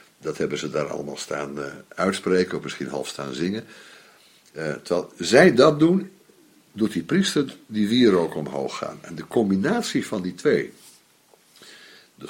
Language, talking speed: Dutch, 155 wpm